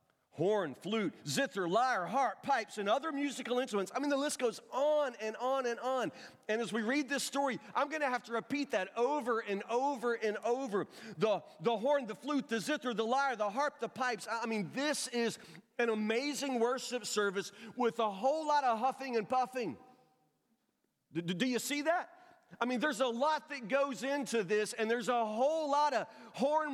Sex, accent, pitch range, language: male, American, 225-275 Hz, English